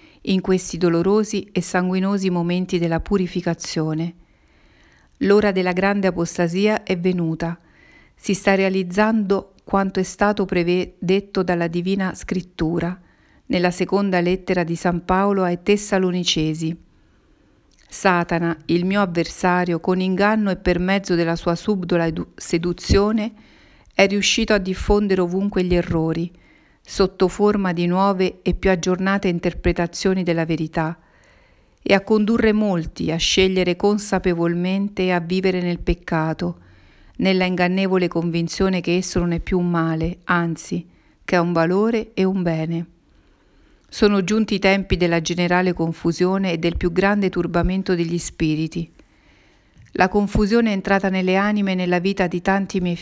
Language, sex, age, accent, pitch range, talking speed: Italian, female, 50-69, native, 170-195 Hz, 135 wpm